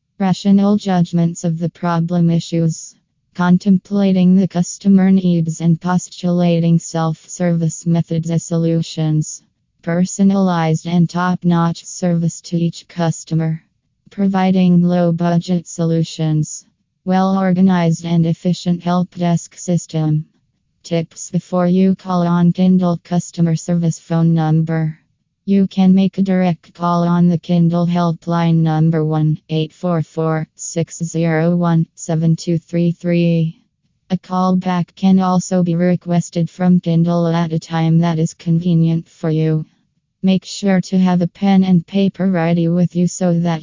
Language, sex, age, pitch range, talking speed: English, female, 20-39, 165-180 Hz, 115 wpm